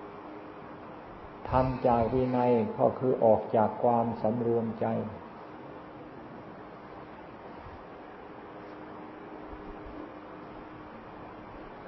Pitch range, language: 105-125 Hz, Thai